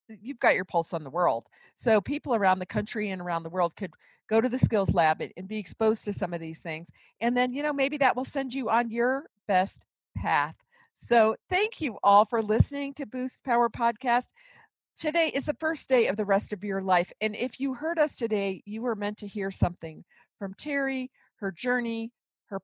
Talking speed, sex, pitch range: 215 wpm, female, 205-275 Hz